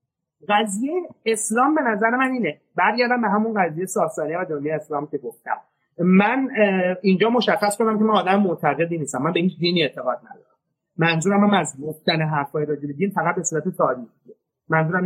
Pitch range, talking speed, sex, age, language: 150-210 Hz, 165 wpm, male, 30-49, Persian